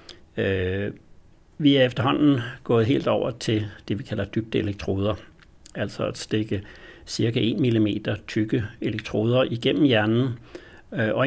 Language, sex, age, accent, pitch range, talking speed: Danish, male, 60-79, native, 105-125 Hz, 115 wpm